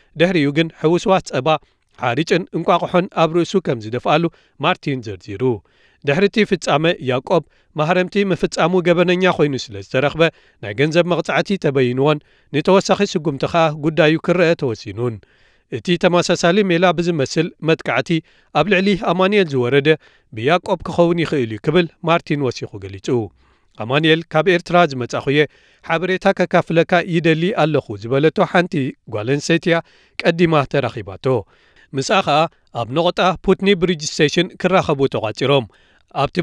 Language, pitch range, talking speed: Amharic, 140-175 Hz, 105 wpm